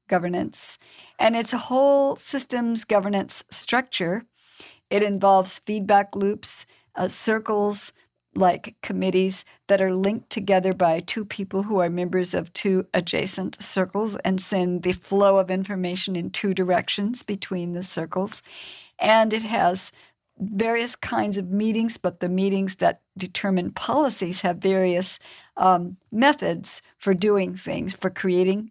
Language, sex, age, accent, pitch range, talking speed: English, female, 50-69, American, 180-210 Hz, 135 wpm